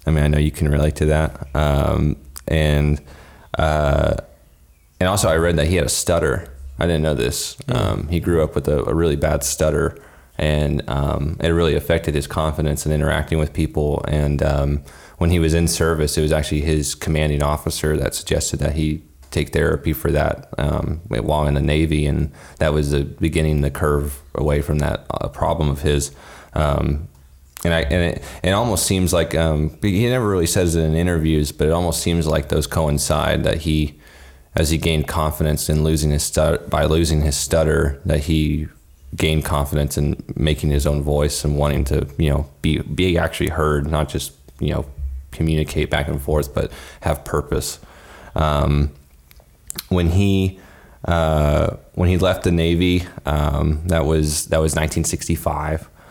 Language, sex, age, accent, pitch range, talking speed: English, male, 30-49, American, 70-80 Hz, 180 wpm